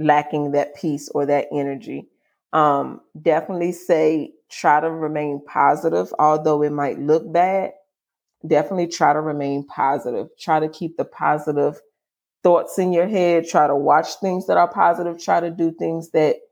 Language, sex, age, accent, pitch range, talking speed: English, female, 30-49, American, 145-170 Hz, 160 wpm